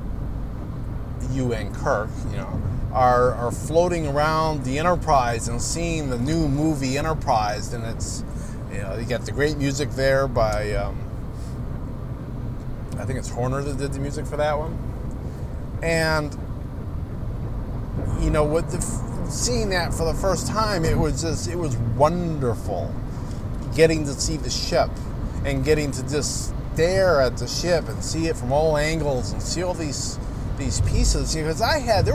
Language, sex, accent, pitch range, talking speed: English, male, American, 110-145 Hz, 160 wpm